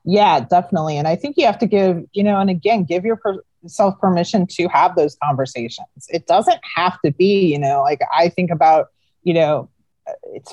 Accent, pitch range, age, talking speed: American, 150-185 Hz, 30-49, 195 wpm